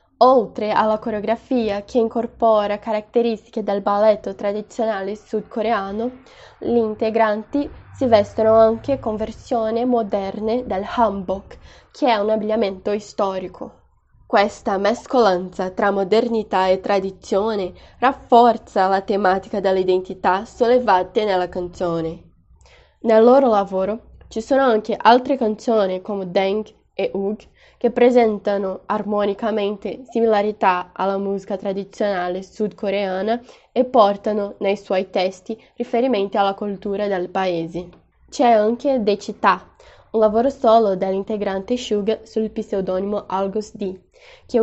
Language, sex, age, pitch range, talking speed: Italian, female, 10-29, 195-230 Hz, 110 wpm